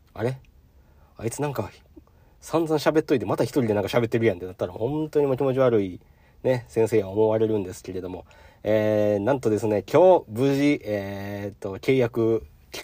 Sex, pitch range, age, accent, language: male, 90-120 Hz, 40-59, native, Japanese